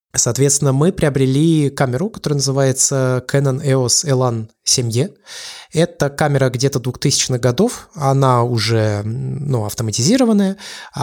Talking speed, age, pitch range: 105 wpm, 20-39, 120-150 Hz